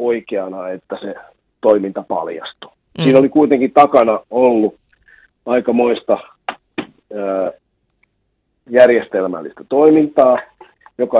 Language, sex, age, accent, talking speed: Finnish, male, 40-59, native, 80 wpm